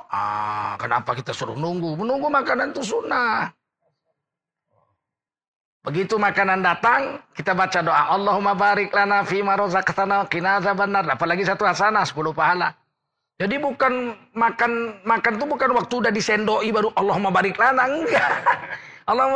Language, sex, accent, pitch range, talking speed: Indonesian, male, native, 145-230 Hz, 110 wpm